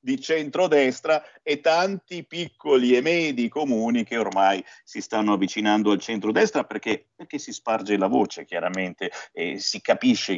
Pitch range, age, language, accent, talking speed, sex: 115-170 Hz, 50-69, Italian, native, 145 wpm, male